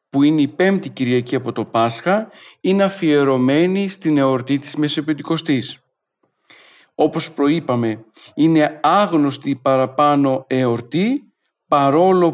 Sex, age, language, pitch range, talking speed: male, 40-59, Greek, 130-160 Hz, 100 wpm